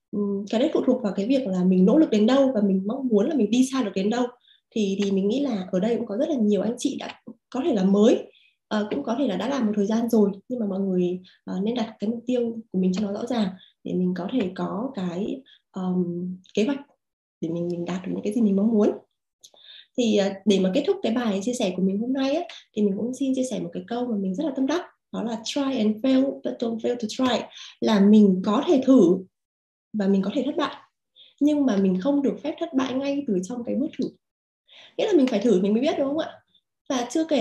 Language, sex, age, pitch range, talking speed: Vietnamese, female, 20-39, 195-265 Hz, 270 wpm